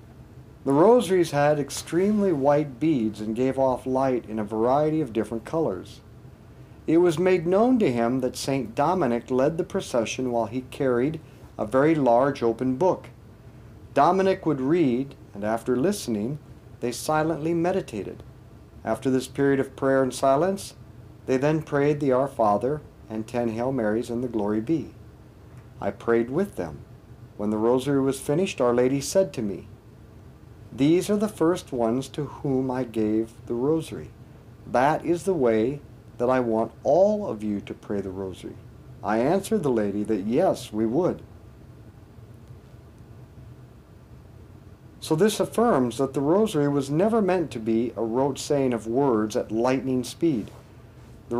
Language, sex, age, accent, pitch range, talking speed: English, male, 50-69, American, 115-150 Hz, 155 wpm